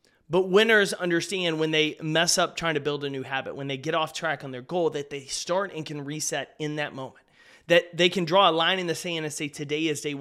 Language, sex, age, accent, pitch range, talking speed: English, male, 30-49, American, 140-170 Hz, 260 wpm